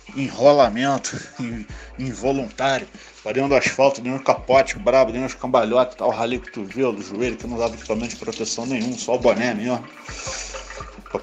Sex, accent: male, Brazilian